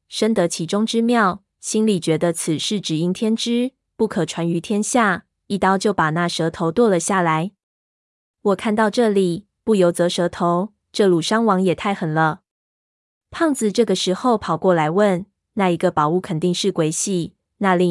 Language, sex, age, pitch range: Chinese, female, 20-39, 170-210 Hz